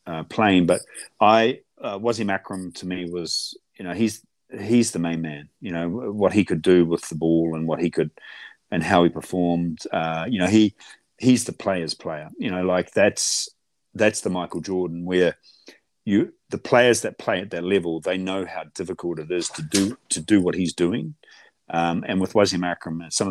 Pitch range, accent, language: 85-95 Hz, Australian, English